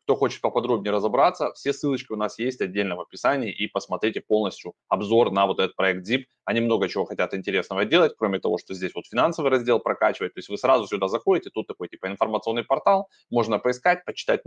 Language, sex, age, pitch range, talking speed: Russian, male, 20-39, 100-130 Hz, 205 wpm